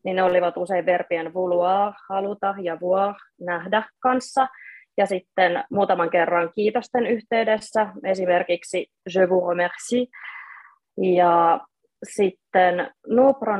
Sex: female